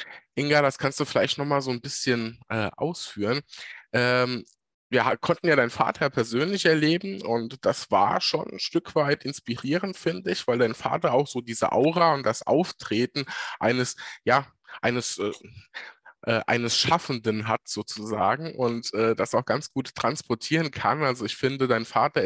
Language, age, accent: German, 20-39, German